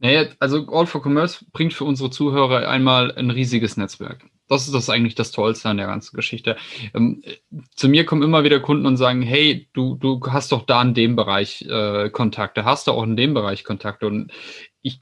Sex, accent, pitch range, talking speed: male, German, 115-145 Hz, 210 wpm